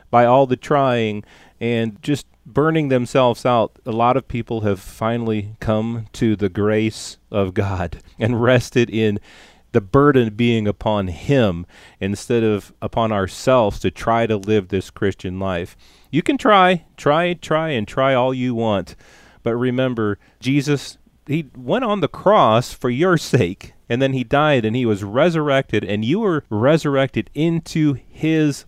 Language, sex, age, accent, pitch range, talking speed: English, male, 30-49, American, 105-130 Hz, 155 wpm